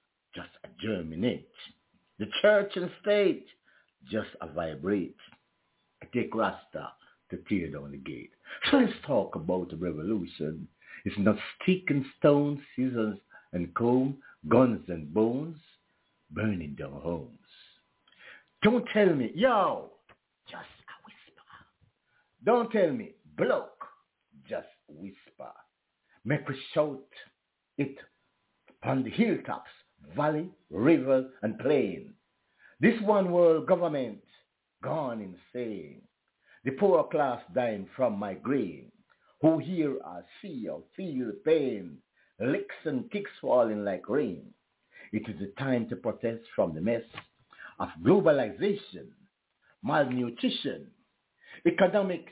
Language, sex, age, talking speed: English, male, 60-79, 115 wpm